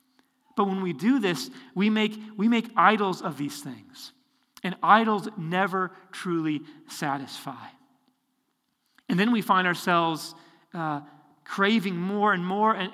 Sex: male